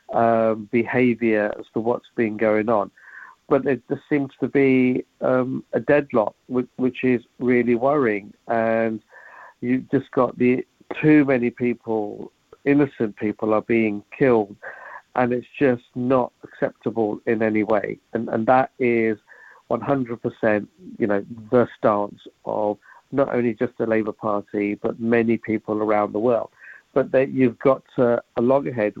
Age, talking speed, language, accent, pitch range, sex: 50-69, 150 wpm, English, British, 110-130 Hz, male